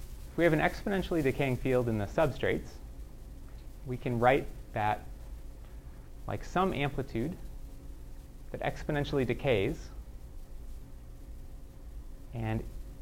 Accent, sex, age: American, male, 30-49